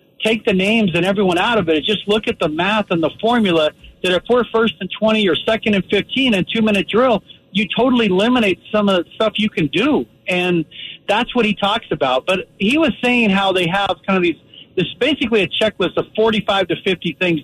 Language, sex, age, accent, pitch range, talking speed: English, male, 50-69, American, 175-225 Hz, 225 wpm